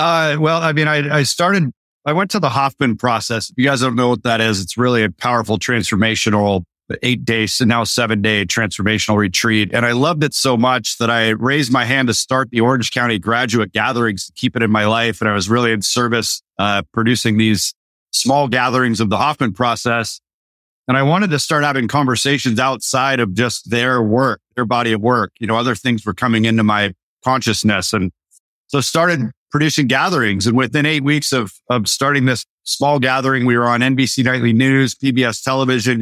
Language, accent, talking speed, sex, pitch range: English, American, 200 wpm, male, 115-135 Hz